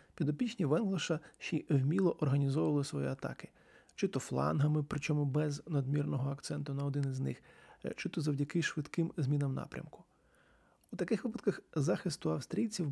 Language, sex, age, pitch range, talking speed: Ukrainian, male, 30-49, 145-180 Hz, 140 wpm